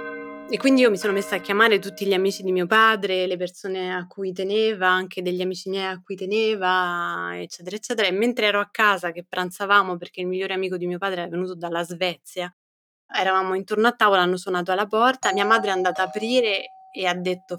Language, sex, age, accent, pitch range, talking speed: Italian, female, 20-39, native, 175-200 Hz, 215 wpm